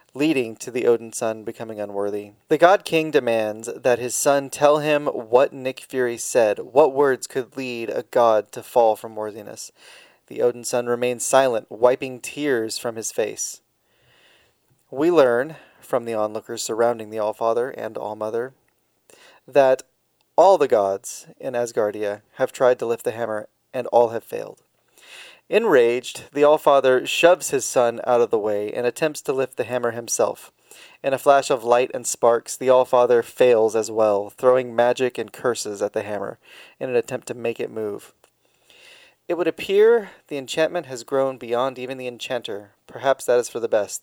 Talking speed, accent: 175 wpm, American